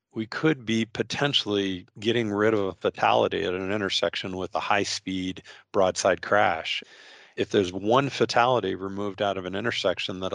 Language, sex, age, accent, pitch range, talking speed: English, male, 40-59, American, 90-105 Hz, 155 wpm